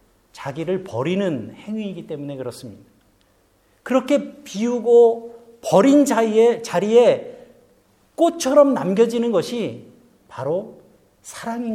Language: Korean